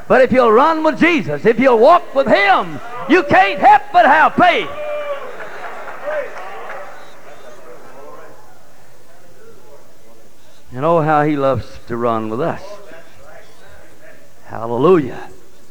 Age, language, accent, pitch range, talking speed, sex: 60-79, English, American, 130-205 Hz, 105 wpm, male